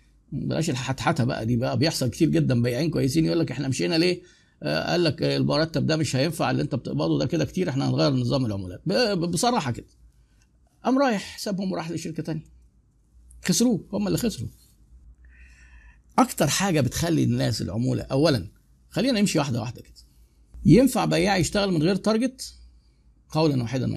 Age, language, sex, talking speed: 50-69, Arabic, male, 160 wpm